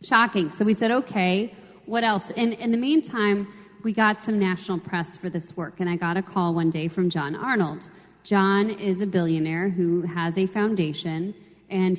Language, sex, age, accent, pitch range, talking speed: English, female, 40-59, American, 180-215 Hz, 190 wpm